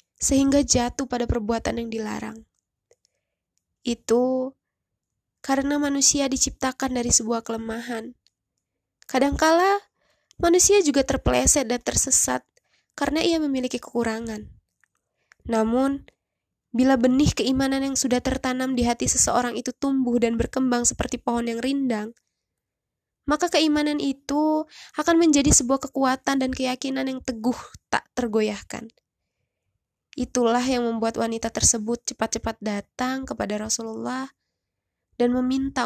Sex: female